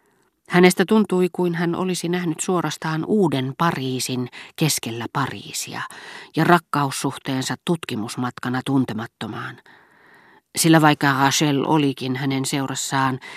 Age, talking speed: 40-59, 95 wpm